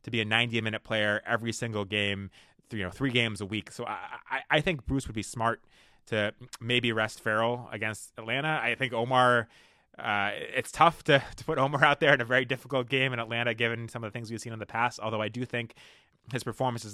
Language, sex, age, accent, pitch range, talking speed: English, male, 20-39, American, 105-125 Hz, 235 wpm